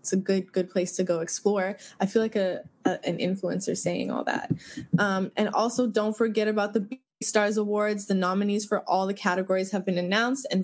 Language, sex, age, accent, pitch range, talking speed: English, female, 20-39, American, 180-210 Hz, 215 wpm